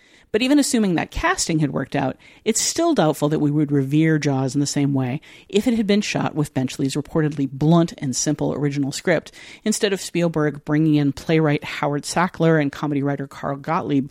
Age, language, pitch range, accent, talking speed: 50-69, English, 145-185 Hz, American, 195 wpm